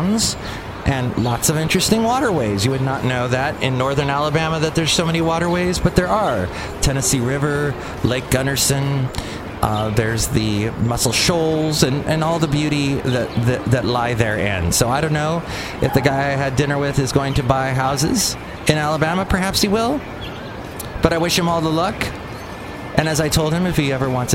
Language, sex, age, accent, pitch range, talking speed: English, male, 30-49, American, 115-155 Hz, 190 wpm